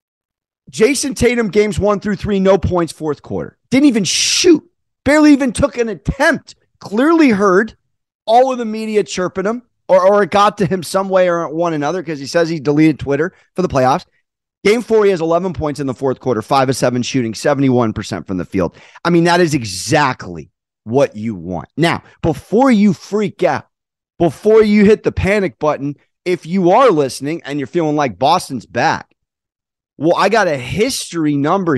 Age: 30-49